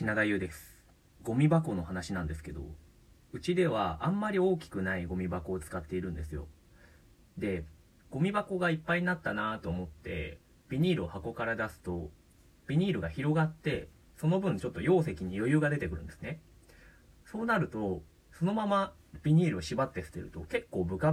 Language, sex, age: Japanese, male, 30-49